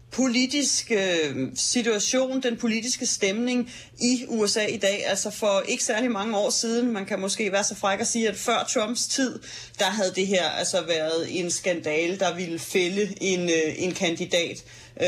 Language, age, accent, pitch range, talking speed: Danish, 30-49, native, 185-235 Hz, 175 wpm